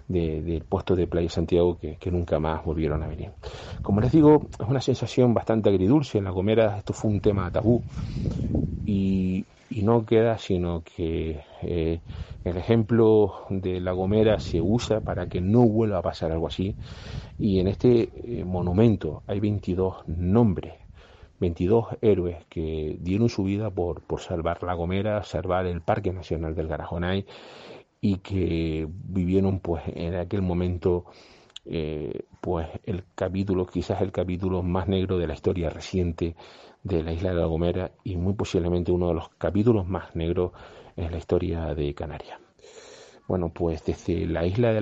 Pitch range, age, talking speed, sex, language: 85-100 Hz, 40-59, 160 wpm, male, Spanish